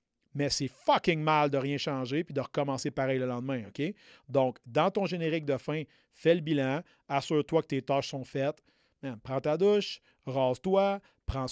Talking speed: 180 wpm